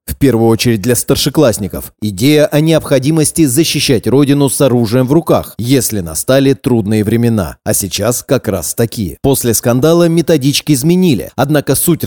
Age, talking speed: 30-49, 145 wpm